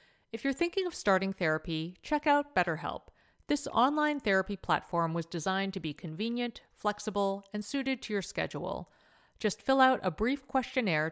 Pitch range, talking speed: 165-220 Hz, 160 wpm